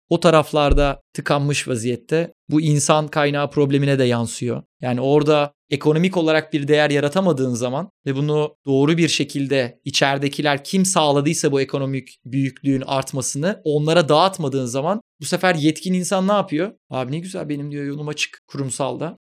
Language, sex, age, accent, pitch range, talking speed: Turkish, male, 30-49, native, 140-175 Hz, 145 wpm